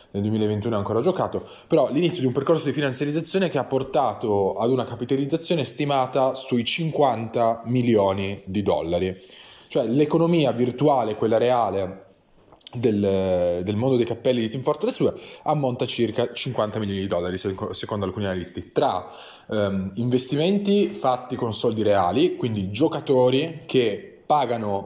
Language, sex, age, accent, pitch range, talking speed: Italian, male, 20-39, native, 100-130 Hz, 140 wpm